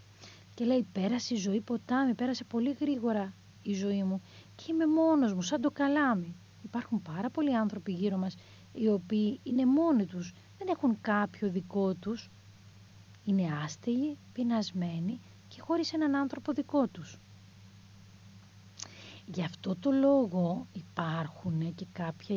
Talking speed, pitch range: 135 wpm, 175-265 Hz